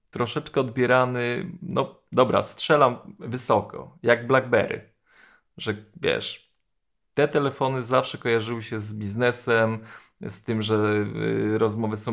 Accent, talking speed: native, 115 wpm